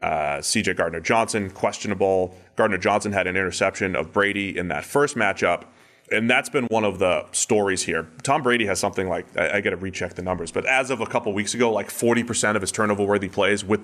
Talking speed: 220 wpm